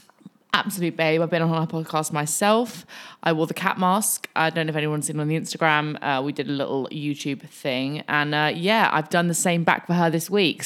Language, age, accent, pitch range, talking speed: English, 20-39, British, 155-210 Hz, 230 wpm